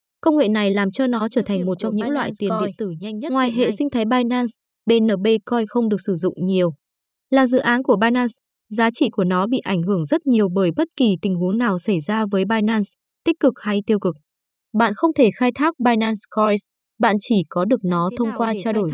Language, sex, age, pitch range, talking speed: Vietnamese, female, 20-39, 195-245 Hz, 235 wpm